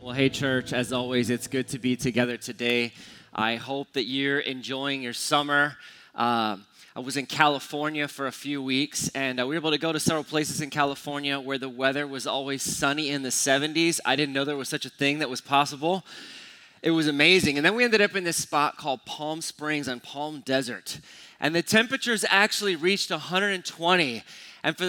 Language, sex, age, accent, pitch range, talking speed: English, male, 20-39, American, 135-175 Hz, 205 wpm